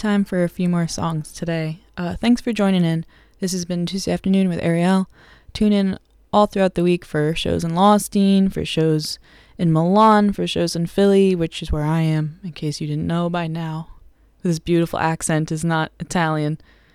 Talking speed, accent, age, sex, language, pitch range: 195 wpm, American, 20-39, female, English, 160-195 Hz